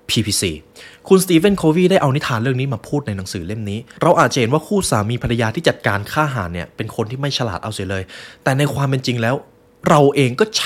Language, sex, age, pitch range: Thai, male, 20-39, 100-140 Hz